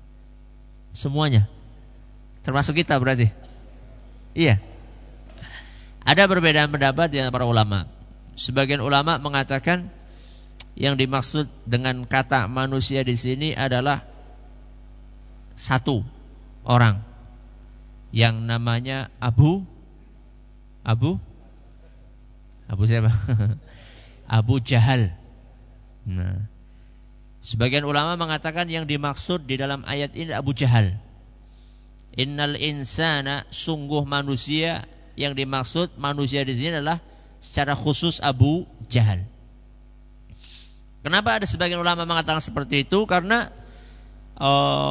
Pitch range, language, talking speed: 120-150 Hz, Indonesian, 90 wpm